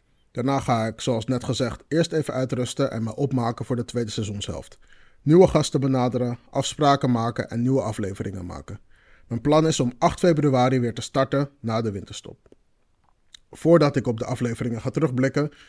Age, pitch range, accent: 30-49, 115-135 Hz, Dutch